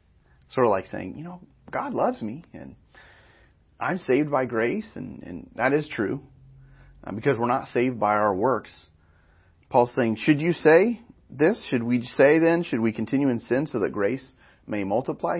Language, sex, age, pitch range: English, male, 40-59, 90-140 Hz